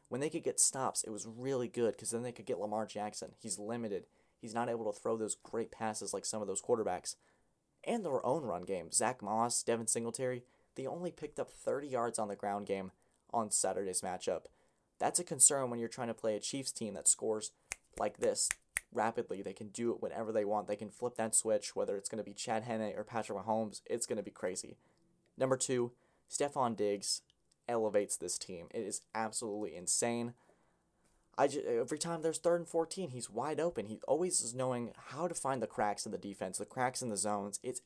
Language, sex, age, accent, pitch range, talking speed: English, male, 20-39, American, 105-130 Hz, 215 wpm